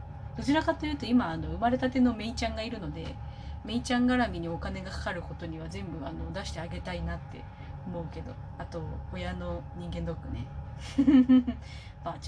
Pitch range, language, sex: 75-100 Hz, Japanese, female